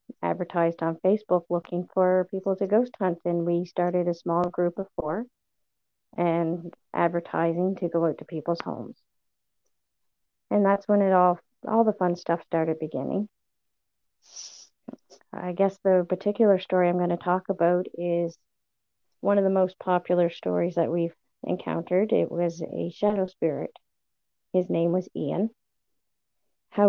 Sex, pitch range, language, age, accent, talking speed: female, 170-190 Hz, English, 40-59, American, 145 wpm